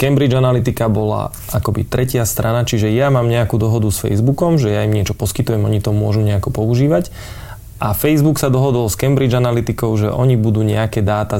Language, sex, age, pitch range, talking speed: Slovak, male, 20-39, 105-120 Hz, 185 wpm